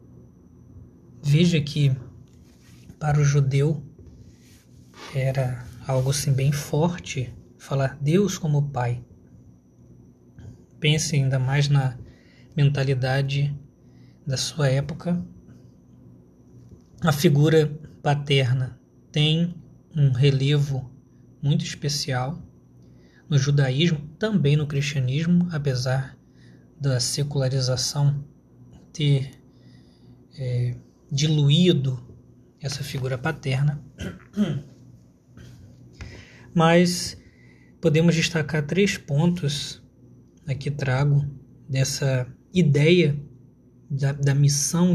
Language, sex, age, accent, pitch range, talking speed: Portuguese, male, 20-39, Brazilian, 125-150 Hz, 70 wpm